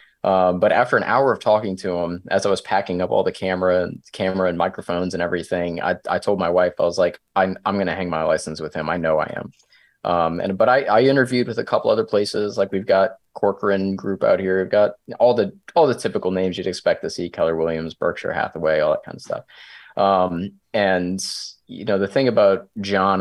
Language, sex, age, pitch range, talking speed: English, male, 20-39, 90-100 Hz, 235 wpm